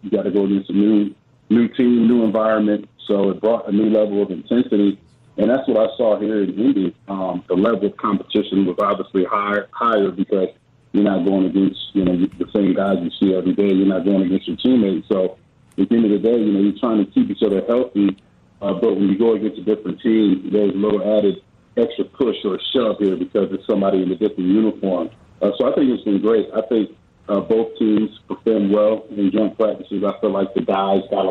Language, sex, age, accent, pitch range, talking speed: English, male, 40-59, American, 95-115 Hz, 230 wpm